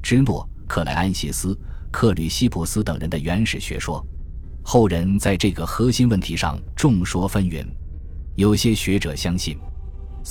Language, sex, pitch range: Chinese, male, 80-105 Hz